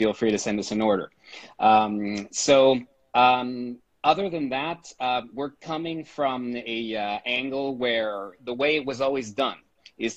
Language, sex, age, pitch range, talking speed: English, male, 30-49, 115-145 Hz, 165 wpm